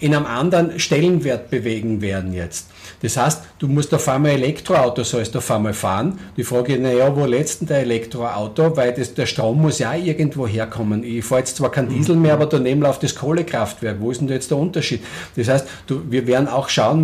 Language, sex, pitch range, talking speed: German, male, 120-155 Hz, 210 wpm